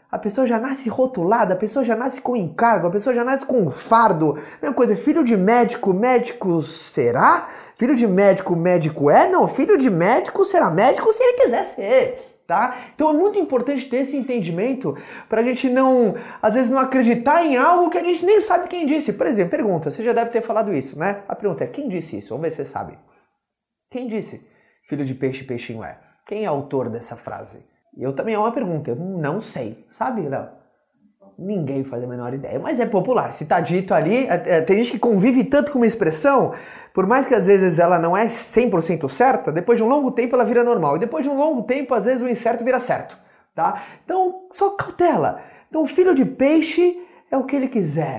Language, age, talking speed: Portuguese, 20-39, 215 wpm